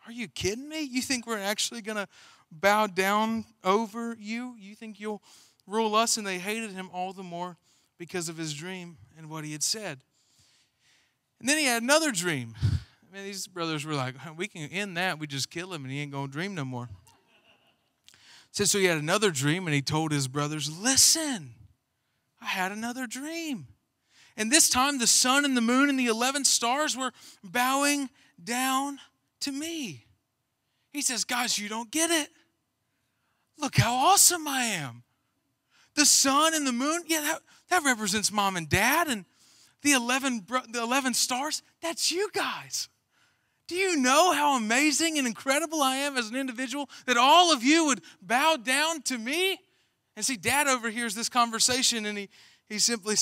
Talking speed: 180 wpm